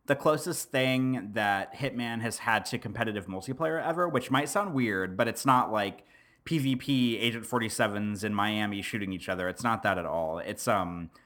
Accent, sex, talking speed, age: American, male, 180 wpm, 30-49